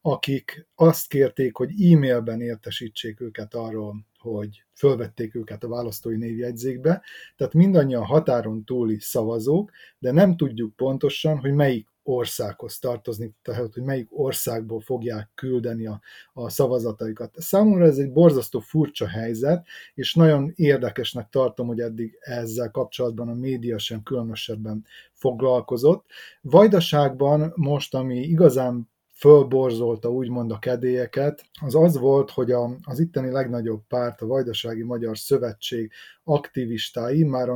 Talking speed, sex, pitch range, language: 125 wpm, male, 115-140 Hz, Hungarian